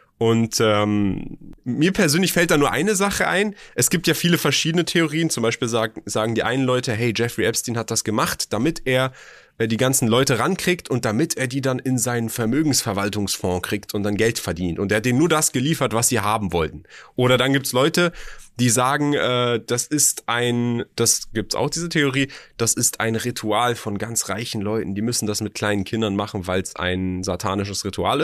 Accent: German